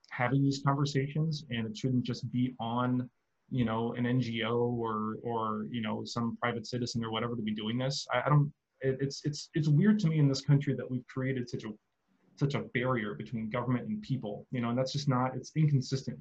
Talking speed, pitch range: 220 wpm, 115-135 Hz